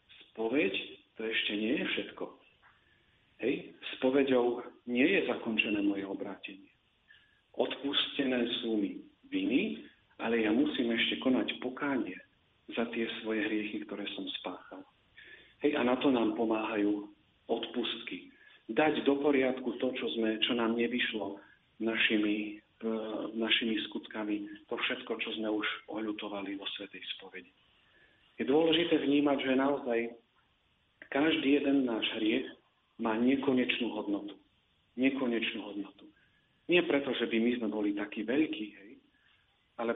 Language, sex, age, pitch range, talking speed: Slovak, male, 50-69, 110-135 Hz, 125 wpm